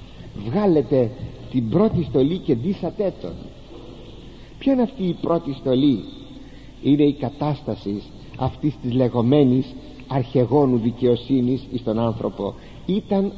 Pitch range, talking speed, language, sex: 125-185 Hz, 110 wpm, Greek, male